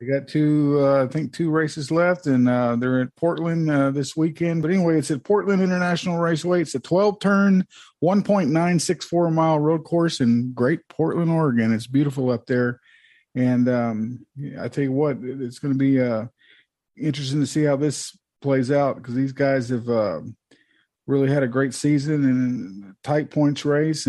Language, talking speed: English, 170 wpm